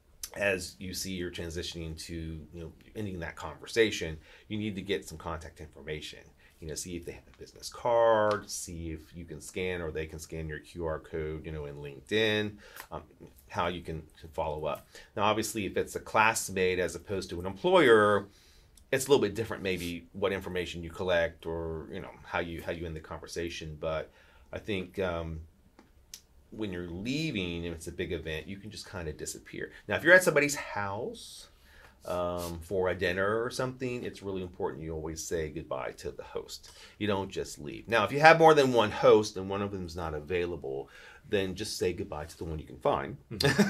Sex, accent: male, American